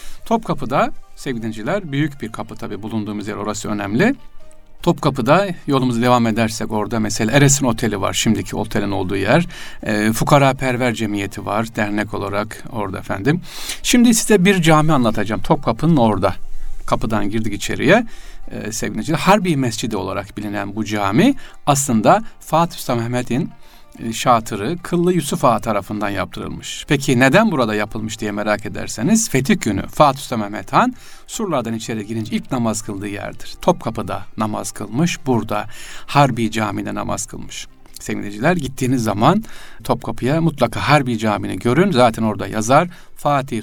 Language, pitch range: Turkish, 105-155 Hz